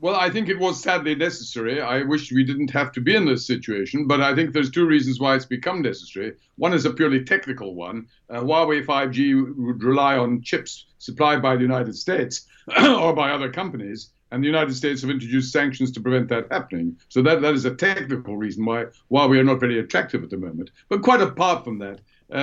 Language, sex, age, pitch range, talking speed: English, male, 60-79, 125-155 Hz, 220 wpm